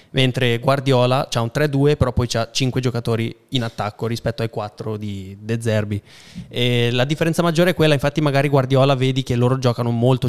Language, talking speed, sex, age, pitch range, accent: Italian, 180 wpm, male, 20-39, 115-130 Hz, native